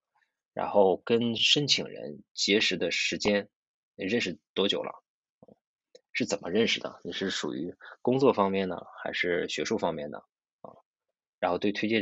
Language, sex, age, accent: Chinese, male, 20-39, native